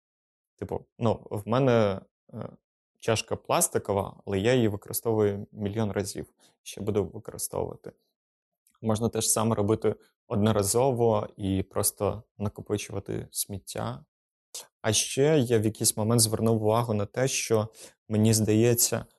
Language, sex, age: Ukrainian, male, 20-39